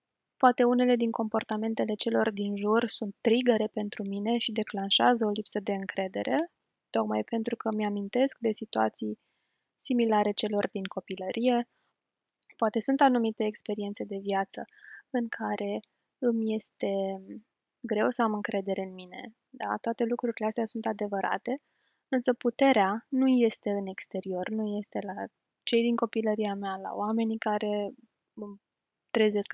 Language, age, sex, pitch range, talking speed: Romanian, 20-39, female, 205-240 Hz, 130 wpm